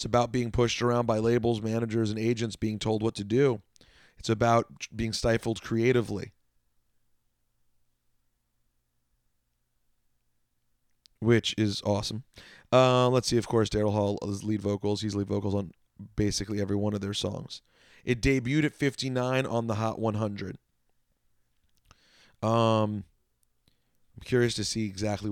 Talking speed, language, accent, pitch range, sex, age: 135 wpm, English, American, 100-125 Hz, male, 30-49